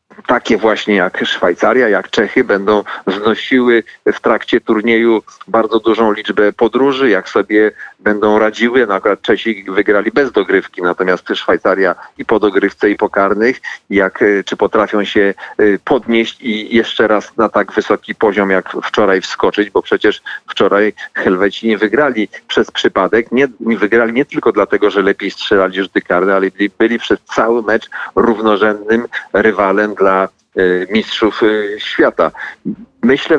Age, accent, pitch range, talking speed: 40-59, native, 100-120 Hz, 140 wpm